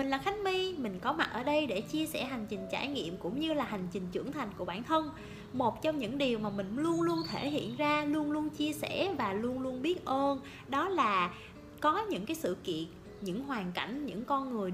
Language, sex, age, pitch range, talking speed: Vietnamese, female, 20-39, 200-305 Hz, 240 wpm